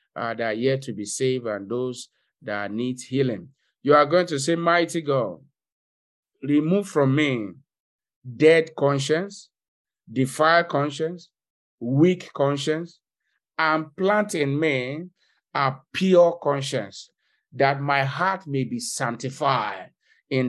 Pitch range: 135-165 Hz